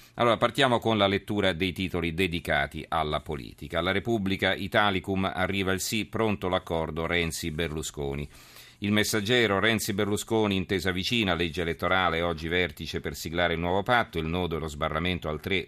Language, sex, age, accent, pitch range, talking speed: Italian, male, 40-59, native, 85-100 Hz, 155 wpm